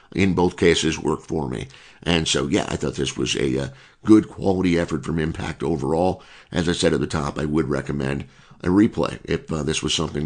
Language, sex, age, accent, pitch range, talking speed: English, male, 50-69, American, 75-90 Hz, 215 wpm